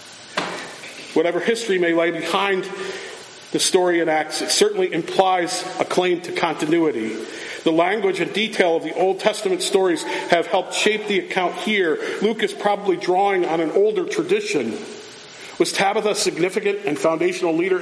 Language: English